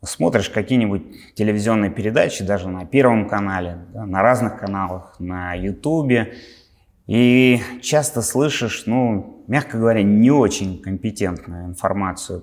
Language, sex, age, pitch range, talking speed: Russian, male, 30-49, 95-125 Hz, 110 wpm